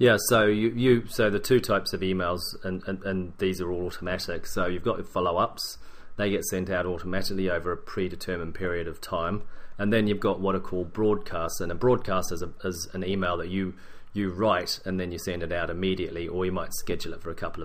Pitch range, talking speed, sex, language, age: 90-100 Hz, 230 wpm, male, English, 30-49